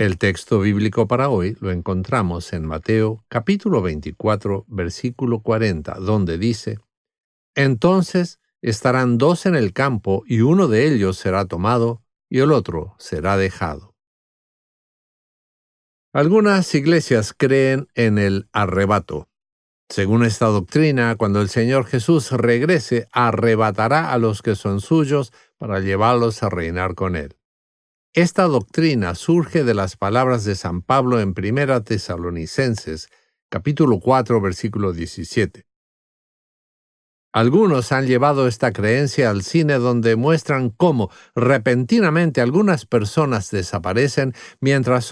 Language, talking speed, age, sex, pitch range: English, 120 wpm, 50-69, male, 95-130 Hz